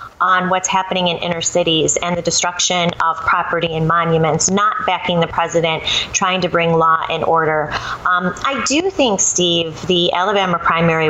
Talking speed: 170 wpm